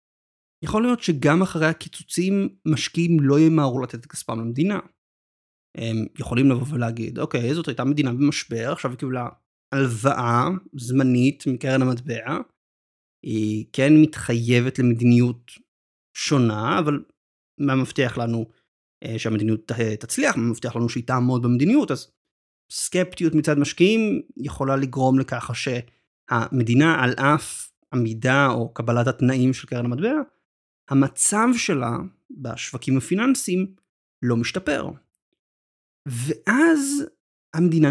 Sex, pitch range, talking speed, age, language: male, 120-160 Hz, 110 wpm, 30-49, Hebrew